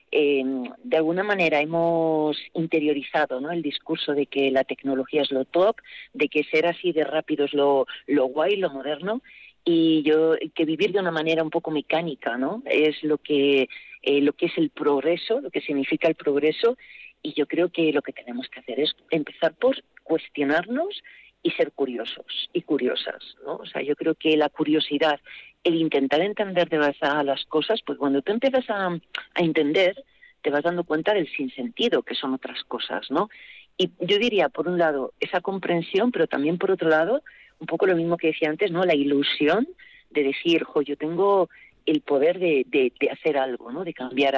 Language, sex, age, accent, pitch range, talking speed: Spanish, female, 40-59, Spanish, 145-185 Hz, 195 wpm